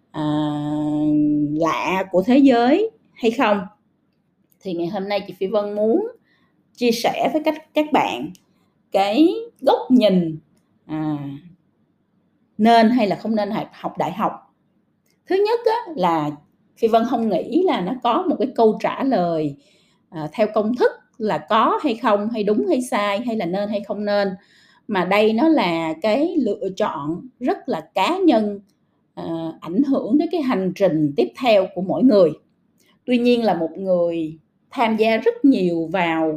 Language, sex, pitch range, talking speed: Vietnamese, female, 170-250 Hz, 155 wpm